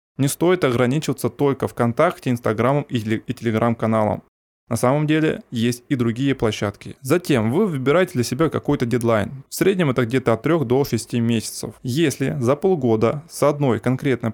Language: Russian